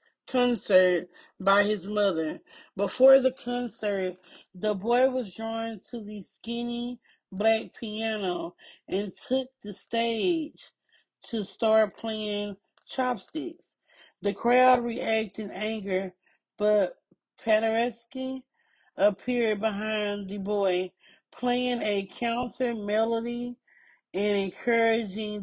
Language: English